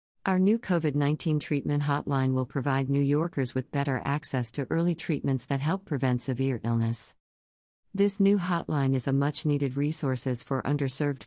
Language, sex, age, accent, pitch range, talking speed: English, female, 50-69, American, 130-150 Hz, 165 wpm